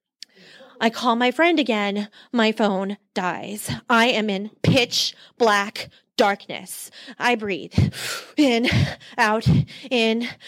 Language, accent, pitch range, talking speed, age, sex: English, American, 210-285 Hz, 110 wpm, 30-49, female